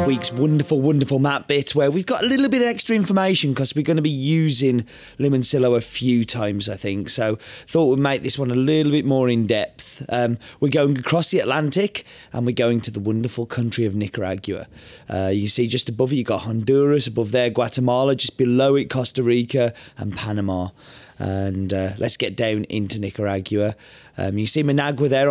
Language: English